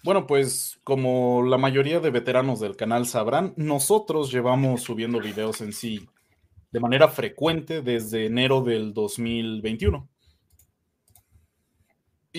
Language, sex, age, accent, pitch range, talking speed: Spanish, male, 30-49, Mexican, 115-155 Hz, 110 wpm